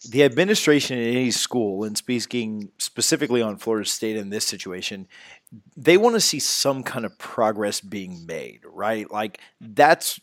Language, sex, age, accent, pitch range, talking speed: English, male, 40-59, American, 105-130 Hz, 160 wpm